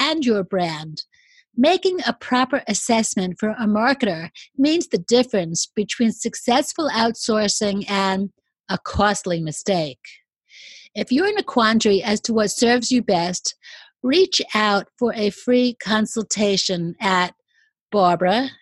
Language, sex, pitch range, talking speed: English, female, 200-245 Hz, 120 wpm